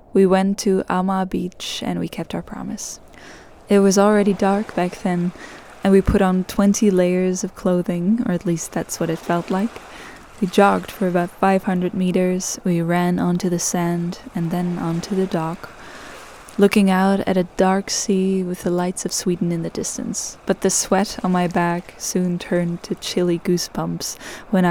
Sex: female